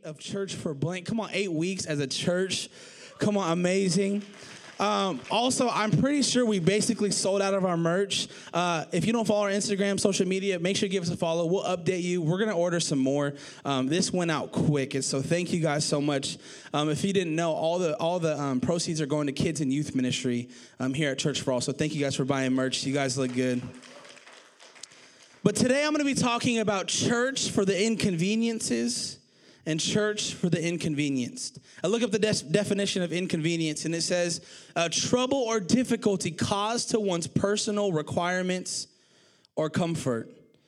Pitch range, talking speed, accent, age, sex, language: 150-205 Hz, 200 wpm, American, 20-39, male, English